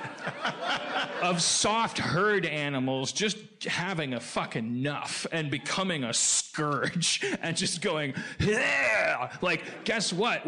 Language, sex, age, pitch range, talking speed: English, male, 30-49, 145-190 Hz, 110 wpm